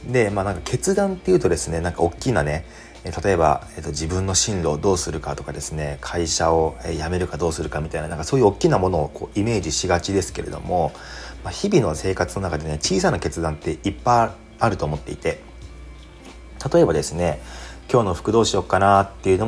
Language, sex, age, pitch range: Japanese, male, 30-49, 75-100 Hz